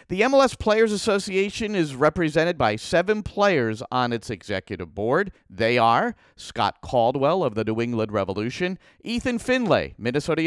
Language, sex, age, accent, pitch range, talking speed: English, male, 40-59, American, 120-195 Hz, 145 wpm